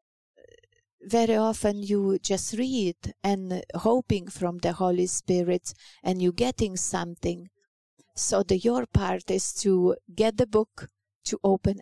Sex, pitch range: female, 180-215 Hz